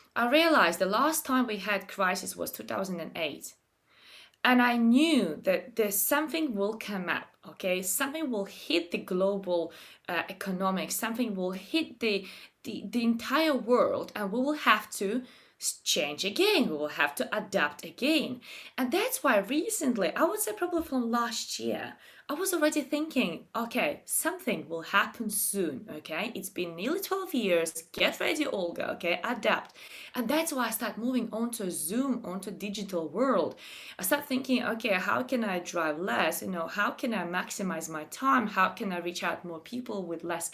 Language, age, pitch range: English, 20-39, 200-295 Hz